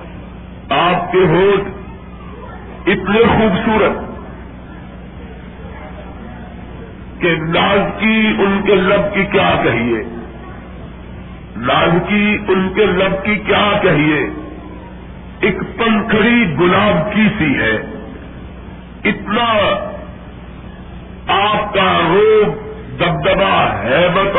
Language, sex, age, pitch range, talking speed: Urdu, male, 50-69, 185-220 Hz, 80 wpm